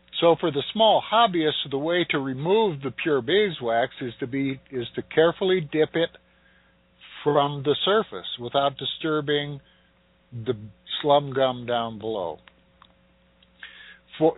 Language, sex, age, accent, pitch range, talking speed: English, male, 60-79, American, 125-160 Hz, 130 wpm